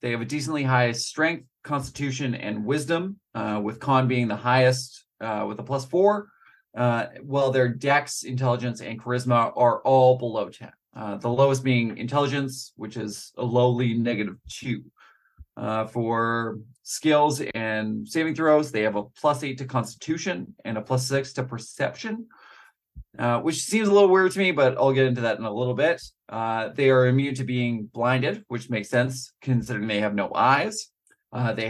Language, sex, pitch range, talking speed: English, male, 115-145 Hz, 180 wpm